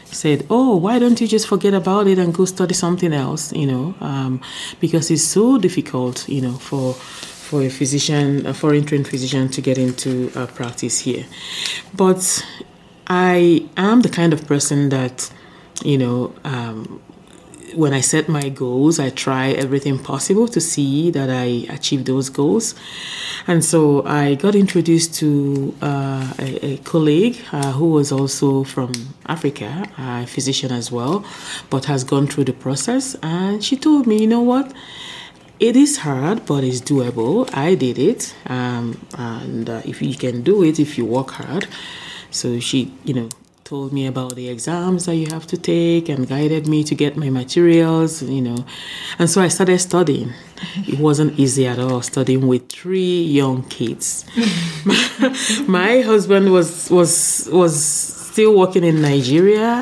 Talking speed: 165 wpm